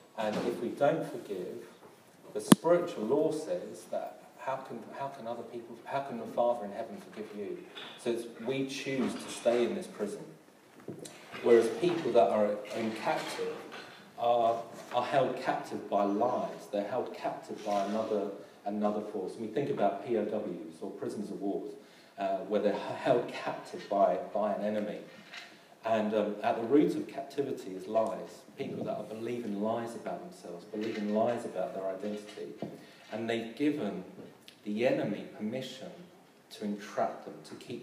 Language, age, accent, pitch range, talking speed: English, 40-59, British, 100-120 Hz, 160 wpm